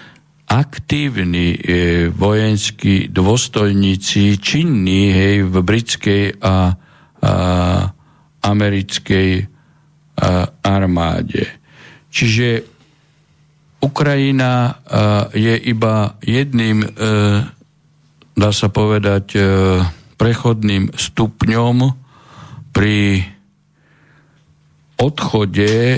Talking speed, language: 60 wpm, Slovak